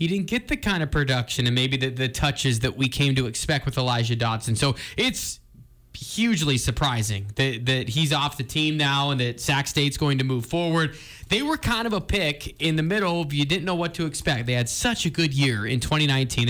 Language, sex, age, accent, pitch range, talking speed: English, male, 20-39, American, 135-170 Hz, 230 wpm